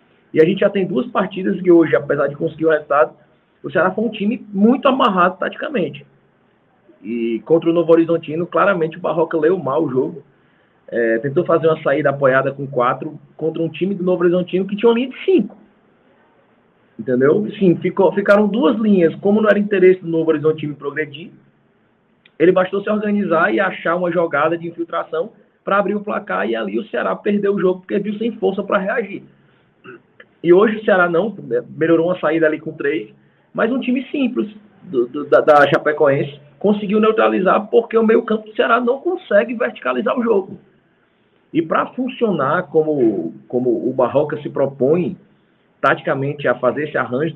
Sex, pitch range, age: male, 160-215 Hz, 20-39